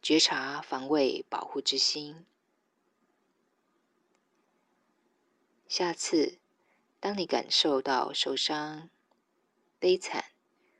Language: Chinese